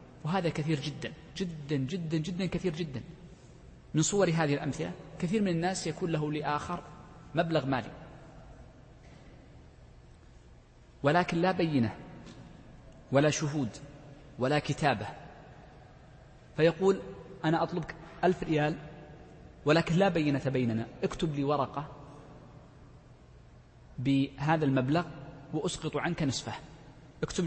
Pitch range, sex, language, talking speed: 130-160 Hz, male, Arabic, 100 wpm